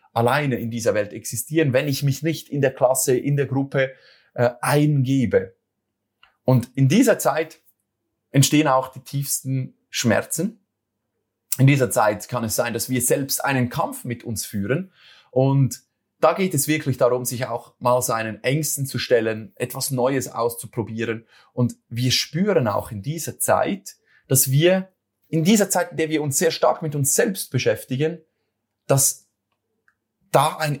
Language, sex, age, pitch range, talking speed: German, male, 30-49, 120-150 Hz, 160 wpm